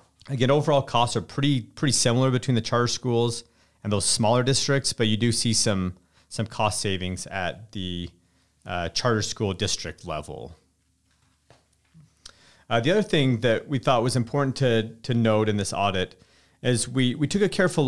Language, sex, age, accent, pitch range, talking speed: English, male, 30-49, American, 100-125 Hz, 170 wpm